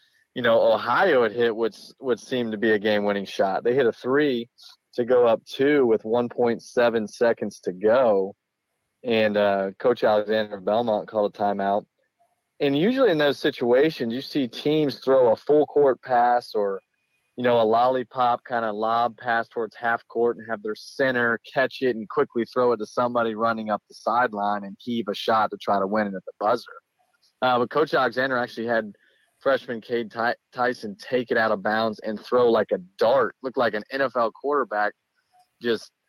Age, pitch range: 30-49, 110-130 Hz